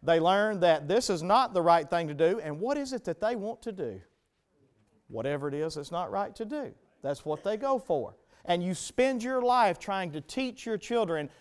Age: 40-59